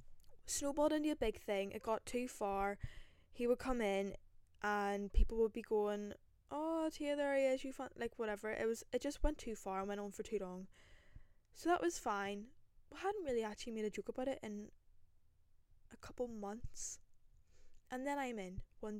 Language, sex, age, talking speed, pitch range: English, female, 10-29, 195 wpm, 195-240 Hz